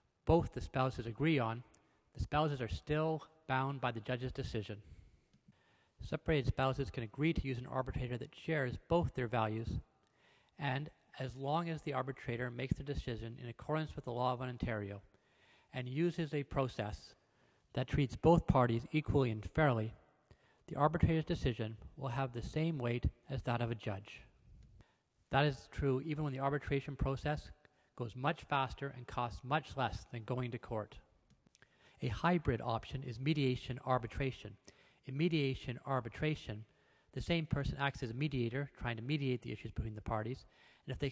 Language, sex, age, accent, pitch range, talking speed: English, male, 40-59, American, 115-145 Hz, 160 wpm